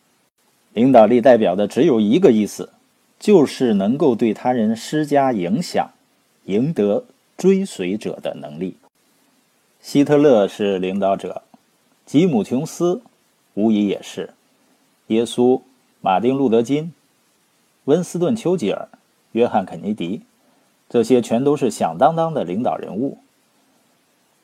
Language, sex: Chinese, male